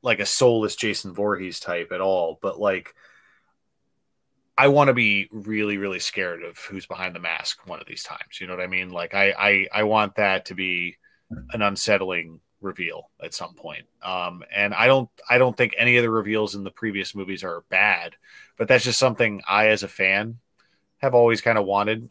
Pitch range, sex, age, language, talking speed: 95-110 Hz, male, 30-49, English, 205 wpm